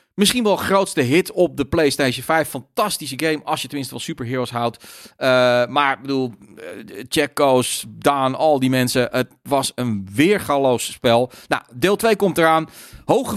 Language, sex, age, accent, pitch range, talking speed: Dutch, male, 40-59, Dutch, 130-185 Hz, 165 wpm